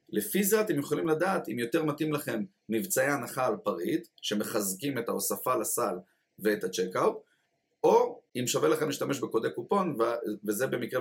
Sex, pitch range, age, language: male, 100-145 Hz, 30-49, Hebrew